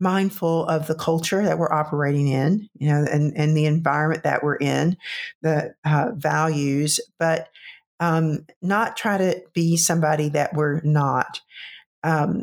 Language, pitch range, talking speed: English, 150-175 Hz, 150 wpm